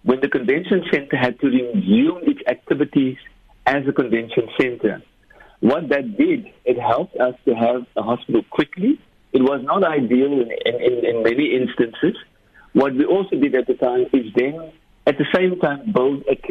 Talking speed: 170 wpm